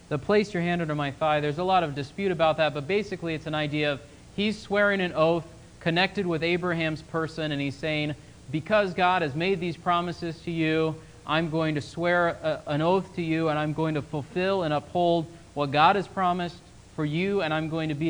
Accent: American